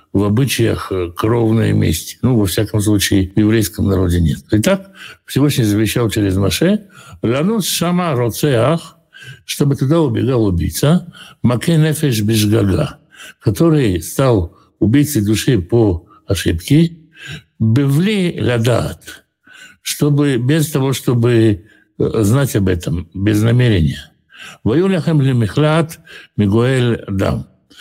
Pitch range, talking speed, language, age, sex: 105-145 Hz, 100 wpm, Russian, 60-79, male